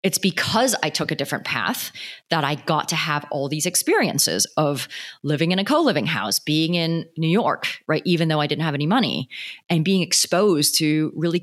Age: 30-49